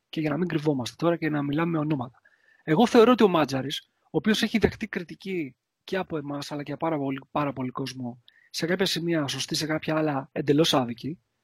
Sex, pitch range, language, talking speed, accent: male, 135-200 Hz, Greek, 210 wpm, Spanish